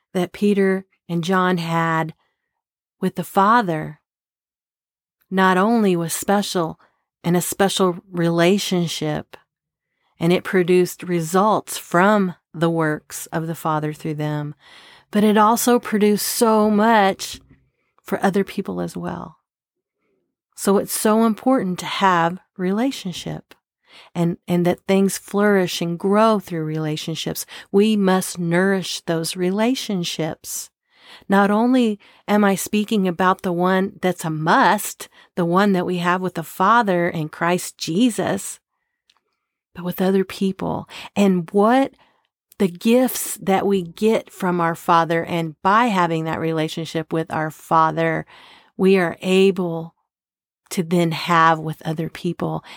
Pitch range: 165-200 Hz